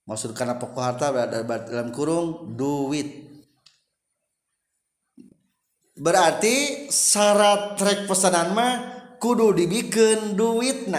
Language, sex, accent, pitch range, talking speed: Indonesian, male, native, 145-205 Hz, 80 wpm